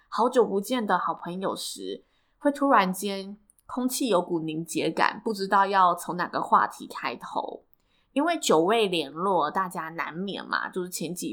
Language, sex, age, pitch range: Chinese, female, 20-39, 170-250 Hz